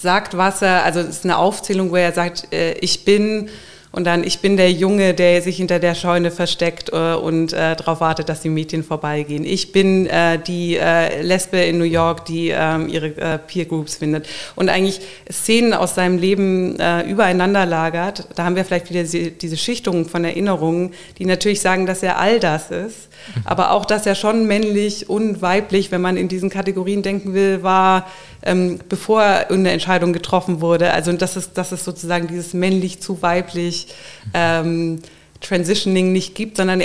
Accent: German